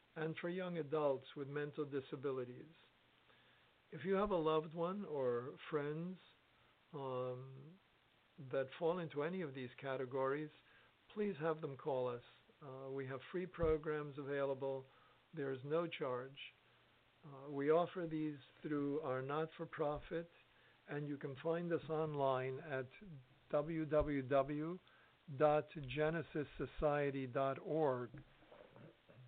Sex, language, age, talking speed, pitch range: male, English, 50-69, 105 wpm, 135-155 Hz